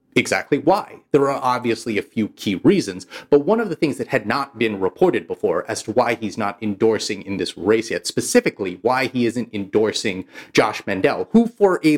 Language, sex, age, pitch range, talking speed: English, male, 30-49, 110-170 Hz, 200 wpm